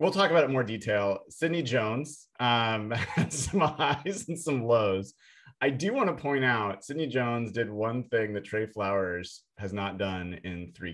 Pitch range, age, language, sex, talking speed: 95-125 Hz, 30-49, English, male, 185 wpm